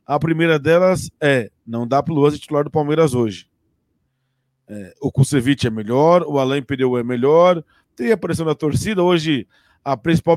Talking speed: 180 wpm